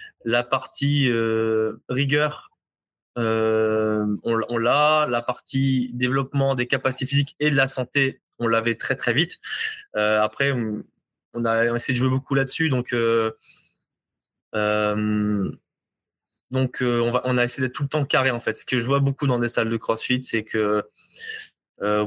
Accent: French